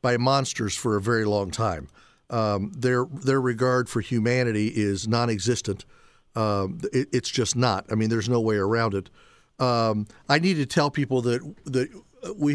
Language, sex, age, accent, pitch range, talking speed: English, male, 50-69, American, 115-135 Hz, 170 wpm